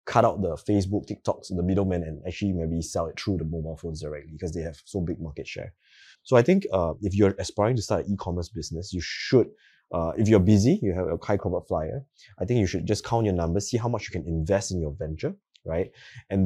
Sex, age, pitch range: male, 20-39, 85-110 Hz